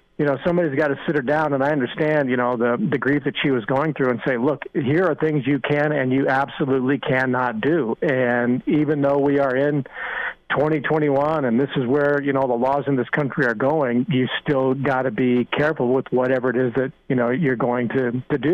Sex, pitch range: male, 130-150 Hz